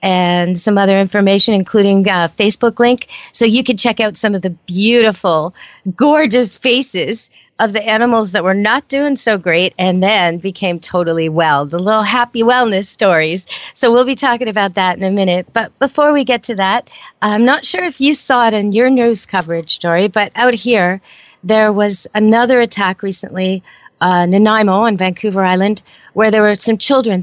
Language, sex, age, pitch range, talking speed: English, female, 40-59, 185-230 Hz, 185 wpm